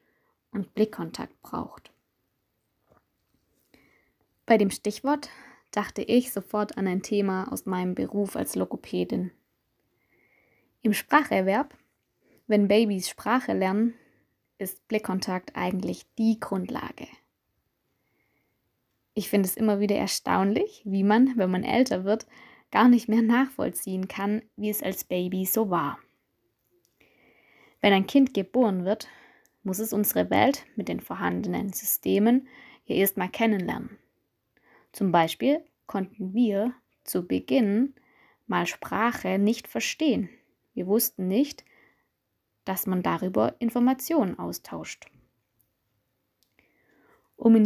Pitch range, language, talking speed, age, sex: 190-240 Hz, German, 110 wpm, 20-39, female